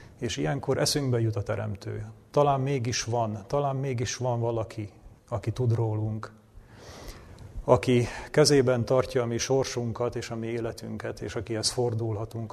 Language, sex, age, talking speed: Hungarian, male, 40-59, 140 wpm